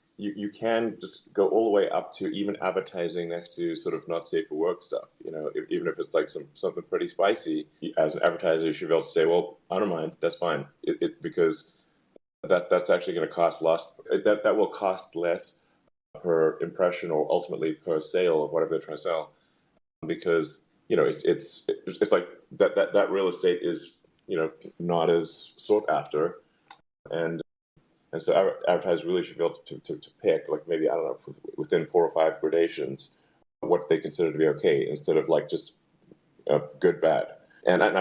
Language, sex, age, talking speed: English, male, 30-49, 205 wpm